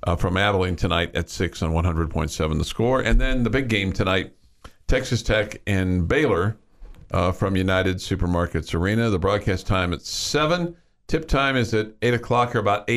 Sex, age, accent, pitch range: male, 50-69, American, 95-130 Hz